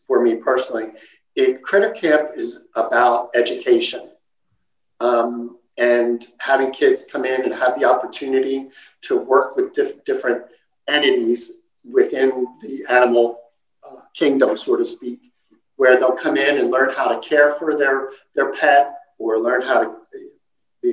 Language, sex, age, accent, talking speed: English, male, 50-69, American, 145 wpm